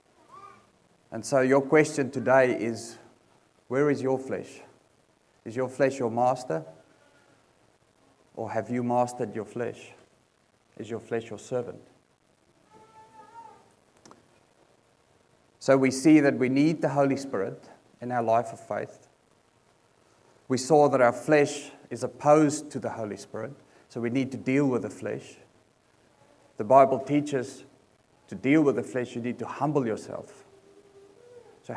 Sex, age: male, 30-49